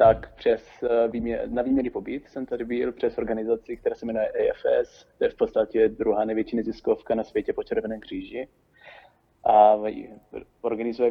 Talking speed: 155 wpm